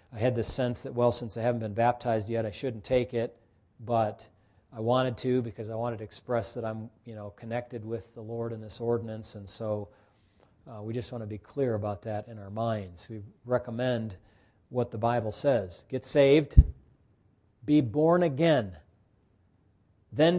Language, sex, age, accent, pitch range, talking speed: English, male, 40-59, American, 110-150 Hz, 180 wpm